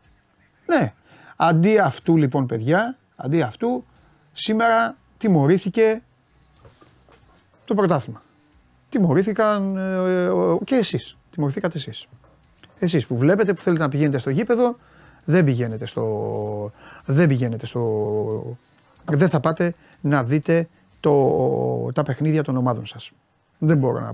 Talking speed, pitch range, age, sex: 110 wpm, 140-215 Hz, 30-49, male